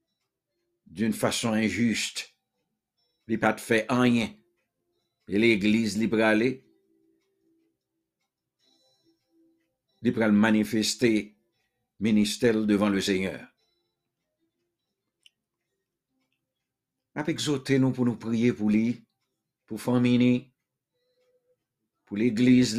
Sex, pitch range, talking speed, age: male, 110-155 Hz, 75 wpm, 60-79